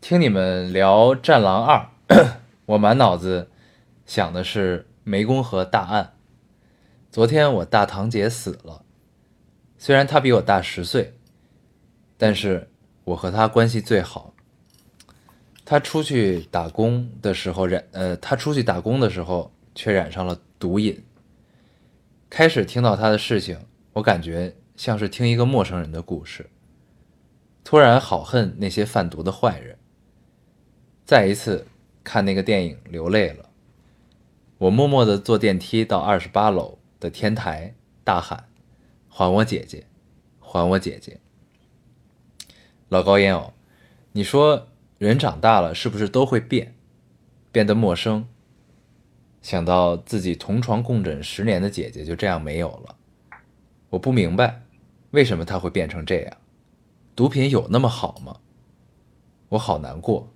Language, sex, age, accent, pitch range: Chinese, male, 20-39, native, 90-115 Hz